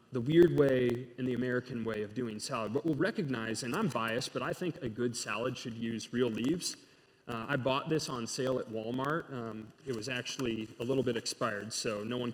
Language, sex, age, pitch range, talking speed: English, male, 30-49, 110-140 Hz, 220 wpm